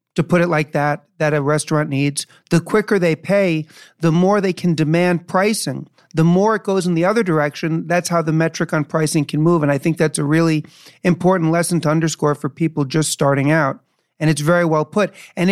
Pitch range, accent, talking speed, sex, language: 150-180 Hz, American, 215 wpm, male, English